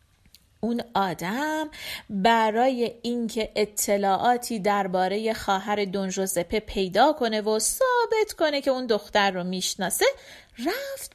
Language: Persian